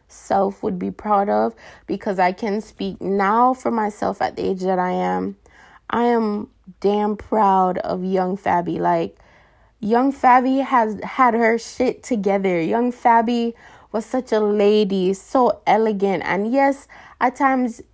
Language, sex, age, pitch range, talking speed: English, female, 20-39, 190-245 Hz, 150 wpm